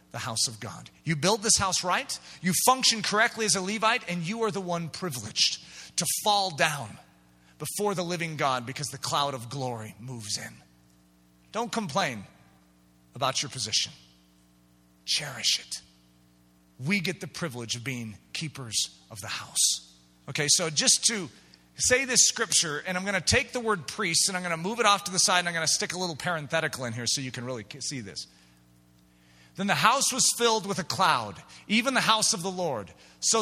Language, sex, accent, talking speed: English, male, American, 195 wpm